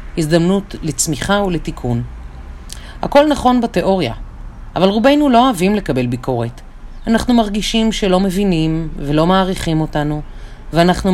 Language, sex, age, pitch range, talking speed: Hebrew, female, 40-59, 150-230 Hz, 110 wpm